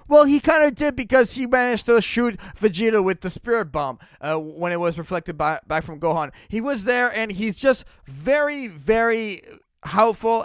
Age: 20-39